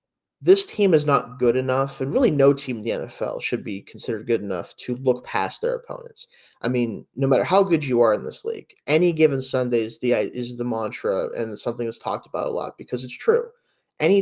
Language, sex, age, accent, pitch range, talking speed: English, male, 10-29, American, 125-165 Hz, 230 wpm